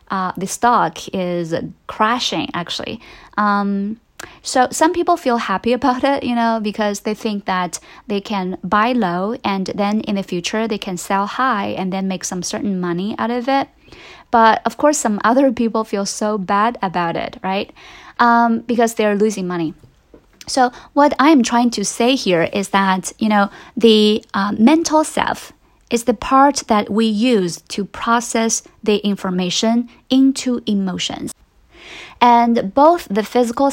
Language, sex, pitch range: Chinese, female, 195-240 Hz